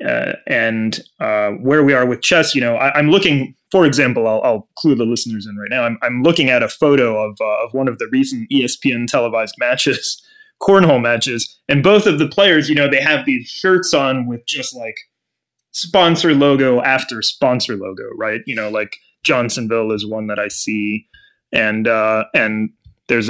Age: 20-39